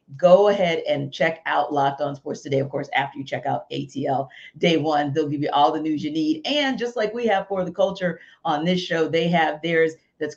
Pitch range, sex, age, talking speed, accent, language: 150-195 Hz, female, 40-59, 235 wpm, American, English